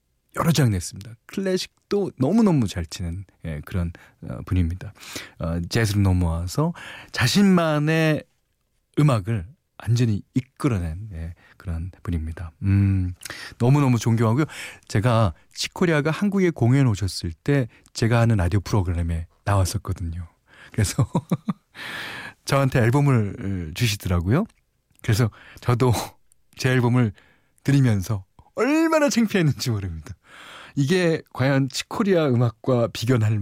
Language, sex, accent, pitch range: Korean, male, native, 90-135 Hz